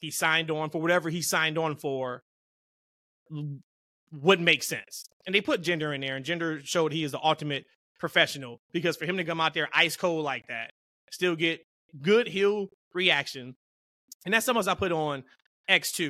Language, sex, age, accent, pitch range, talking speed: English, male, 30-49, American, 155-185 Hz, 185 wpm